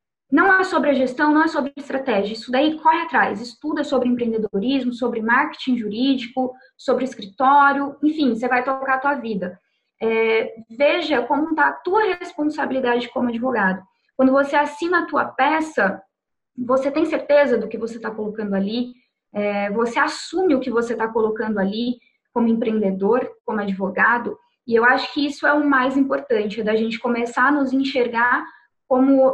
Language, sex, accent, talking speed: Portuguese, female, Brazilian, 165 wpm